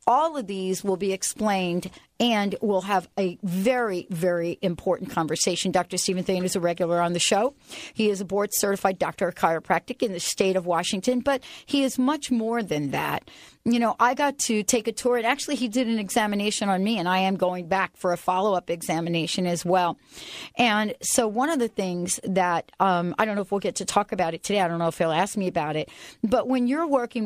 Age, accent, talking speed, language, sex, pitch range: 40-59, American, 220 wpm, English, female, 185-245 Hz